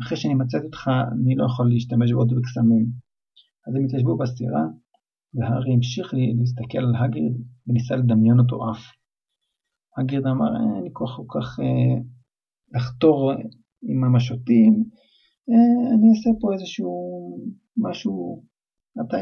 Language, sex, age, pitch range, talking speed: Hebrew, male, 50-69, 120-145 Hz, 130 wpm